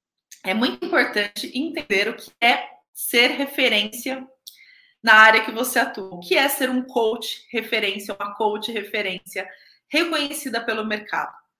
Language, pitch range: Portuguese, 210-275 Hz